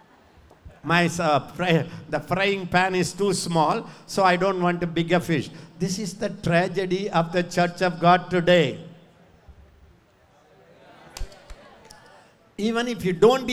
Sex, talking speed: male, 140 wpm